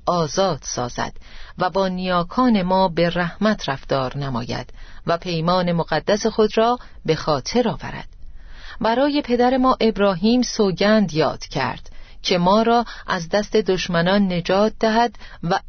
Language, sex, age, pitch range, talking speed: Persian, female, 40-59, 160-200 Hz, 130 wpm